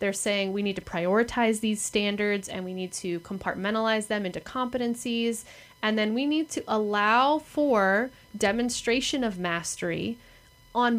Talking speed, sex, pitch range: 150 wpm, female, 190-240 Hz